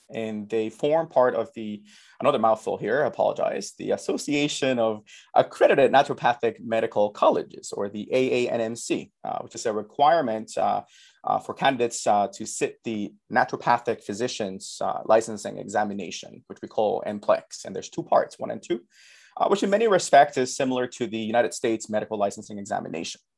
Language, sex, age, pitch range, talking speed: English, male, 30-49, 110-135 Hz, 165 wpm